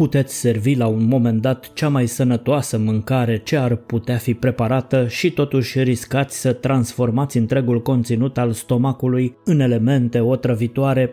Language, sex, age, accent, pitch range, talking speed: Romanian, male, 20-39, native, 115-130 Hz, 145 wpm